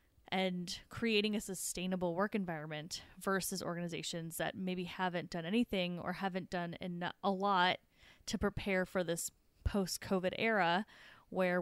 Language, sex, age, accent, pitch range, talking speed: English, female, 20-39, American, 180-220 Hz, 135 wpm